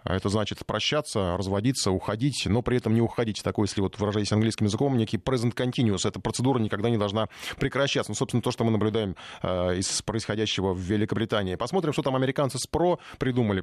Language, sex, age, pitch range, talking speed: Russian, male, 20-39, 100-130 Hz, 190 wpm